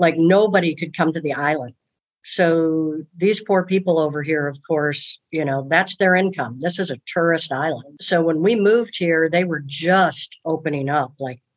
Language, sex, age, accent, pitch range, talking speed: English, female, 60-79, American, 150-190 Hz, 185 wpm